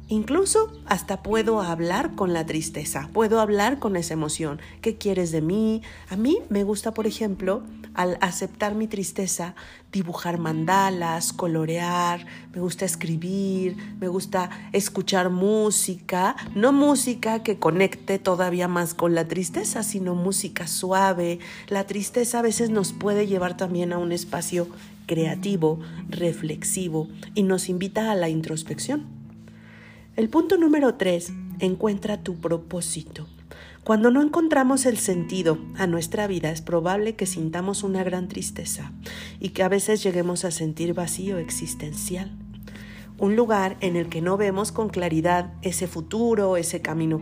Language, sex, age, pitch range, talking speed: Spanish, female, 40-59, 165-205 Hz, 140 wpm